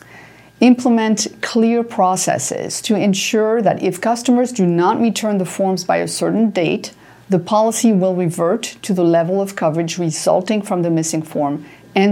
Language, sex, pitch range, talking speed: English, female, 170-215 Hz, 160 wpm